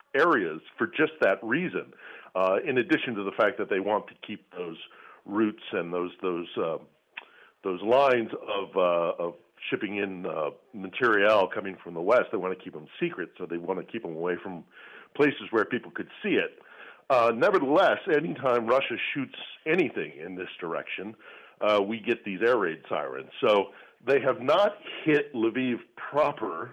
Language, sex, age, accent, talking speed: English, male, 50-69, American, 175 wpm